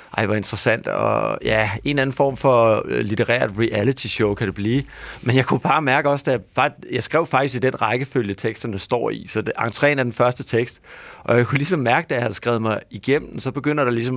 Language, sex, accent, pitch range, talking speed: Danish, male, native, 115-145 Hz, 235 wpm